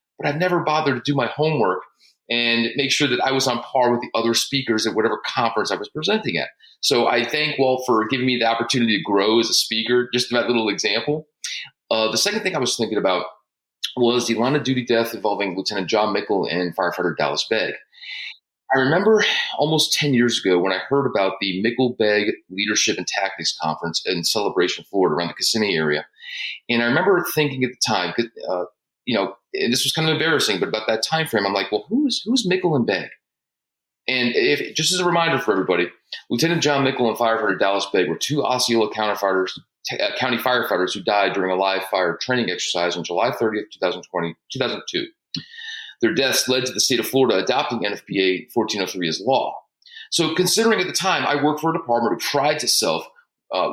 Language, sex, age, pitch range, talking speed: English, male, 30-49, 110-150 Hz, 200 wpm